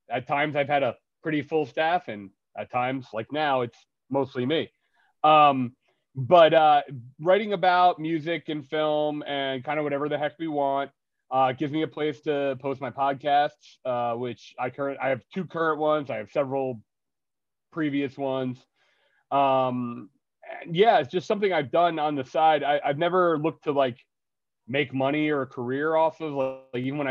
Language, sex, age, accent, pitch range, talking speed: English, male, 30-49, American, 125-150 Hz, 180 wpm